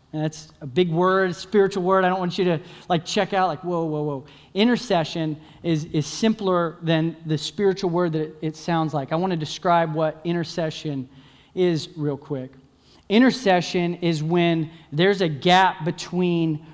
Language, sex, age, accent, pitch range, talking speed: English, male, 30-49, American, 160-200 Hz, 170 wpm